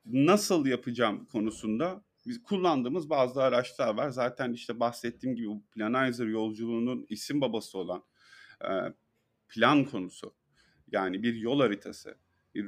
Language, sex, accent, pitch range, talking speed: Turkish, male, native, 115-145 Hz, 120 wpm